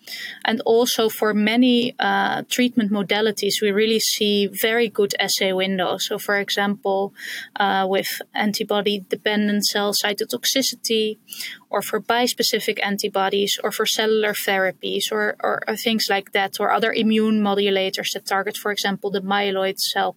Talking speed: 140 wpm